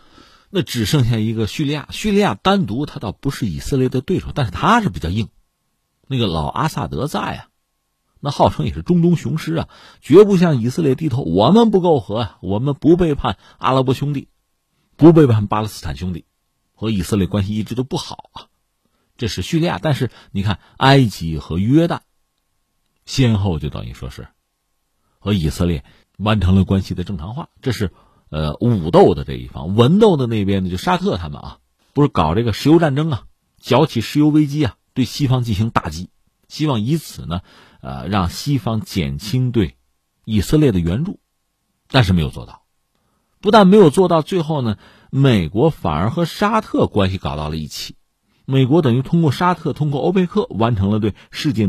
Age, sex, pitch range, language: 50-69, male, 95-150 Hz, Chinese